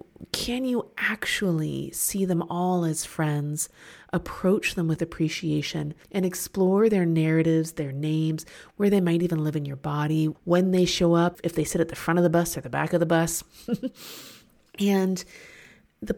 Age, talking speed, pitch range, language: 30-49, 175 wpm, 165-195 Hz, English